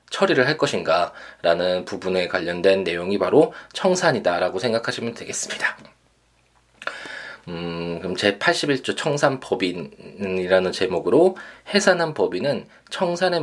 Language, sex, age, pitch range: Korean, male, 20-39, 95-130 Hz